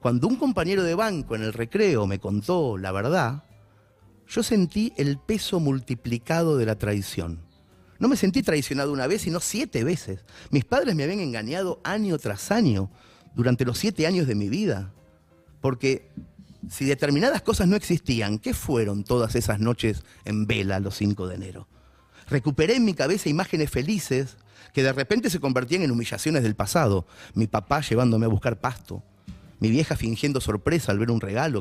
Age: 30-49